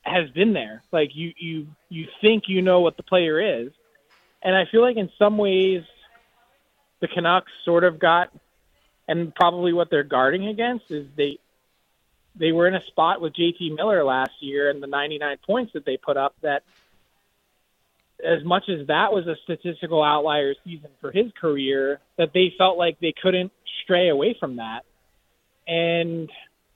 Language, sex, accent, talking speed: English, male, American, 170 wpm